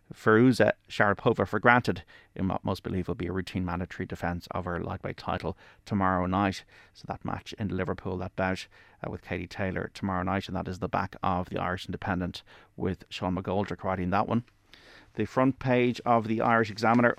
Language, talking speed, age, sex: English, 190 wpm, 30-49, male